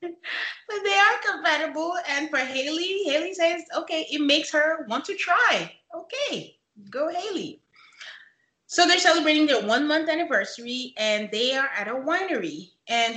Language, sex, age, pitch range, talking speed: English, female, 30-49, 195-290 Hz, 145 wpm